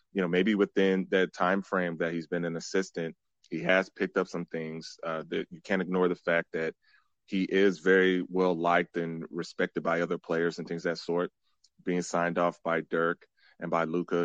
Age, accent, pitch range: 30-49, American, 85-95 Hz